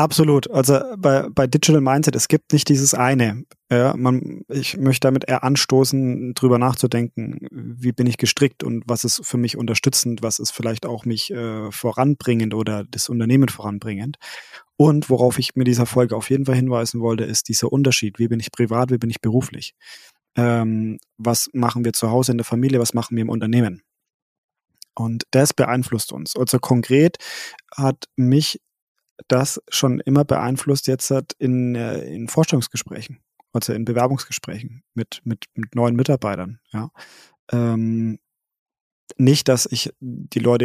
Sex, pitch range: male, 115-135 Hz